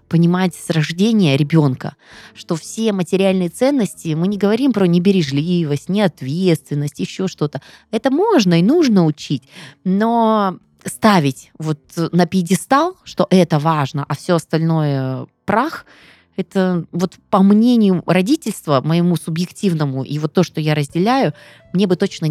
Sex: female